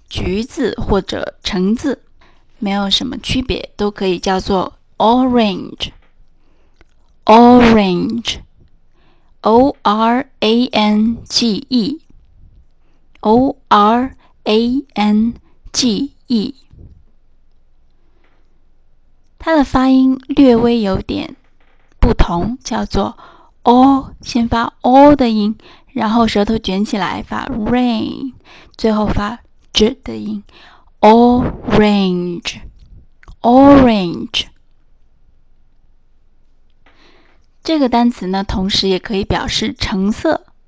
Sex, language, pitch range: female, Chinese, 195-250 Hz